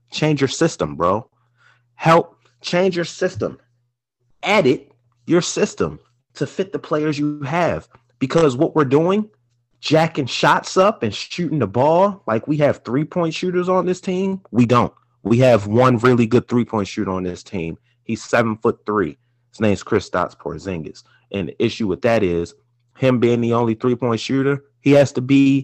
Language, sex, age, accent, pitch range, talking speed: English, male, 30-49, American, 110-140 Hz, 180 wpm